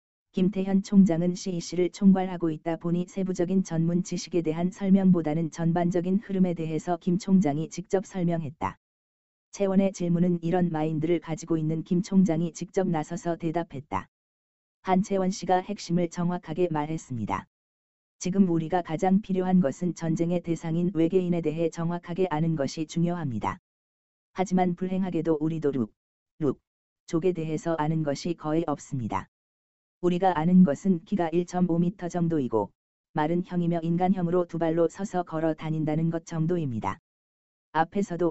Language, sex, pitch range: Korean, female, 155-180 Hz